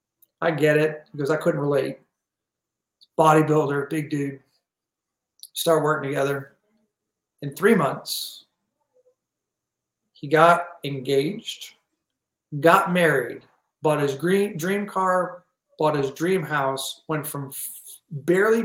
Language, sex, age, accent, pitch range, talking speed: English, male, 40-59, American, 150-230 Hz, 105 wpm